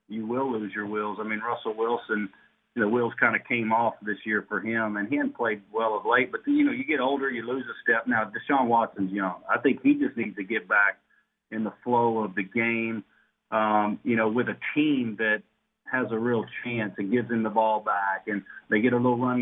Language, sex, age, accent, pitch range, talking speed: English, male, 40-59, American, 100-115 Hz, 240 wpm